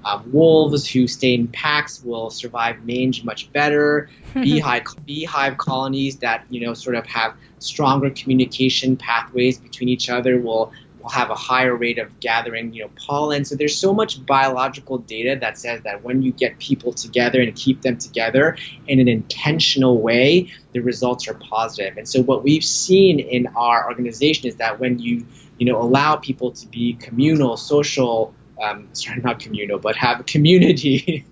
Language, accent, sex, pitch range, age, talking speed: English, American, male, 120-140 Hz, 20-39, 175 wpm